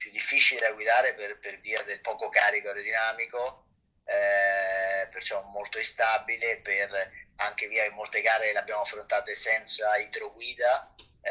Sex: male